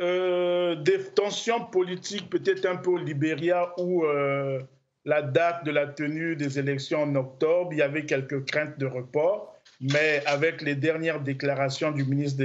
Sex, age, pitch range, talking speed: male, 50-69, 145-185 Hz, 165 wpm